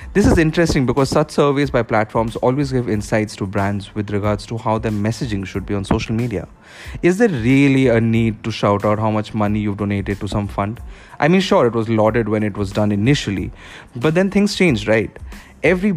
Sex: male